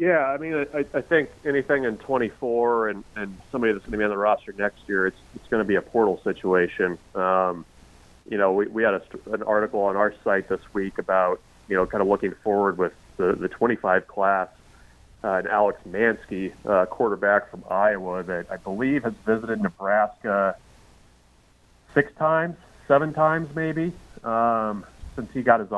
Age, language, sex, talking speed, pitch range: 30-49, English, male, 185 wpm, 95-115 Hz